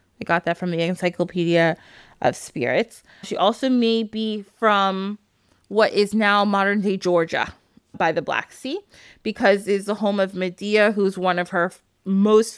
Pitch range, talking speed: 180-225 Hz, 155 wpm